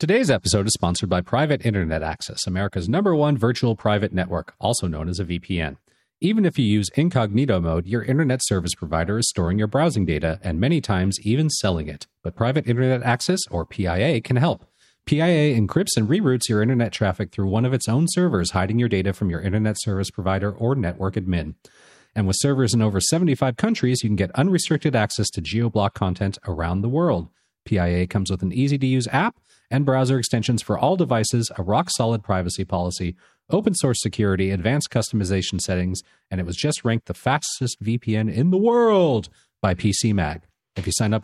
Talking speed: 185 wpm